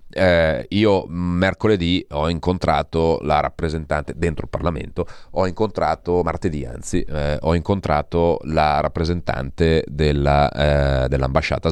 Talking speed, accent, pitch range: 115 wpm, native, 75-90 Hz